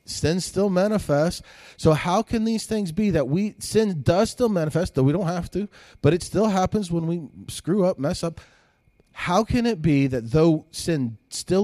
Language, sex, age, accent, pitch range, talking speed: English, male, 40-59, American, 120-170 Hz, 195 wpm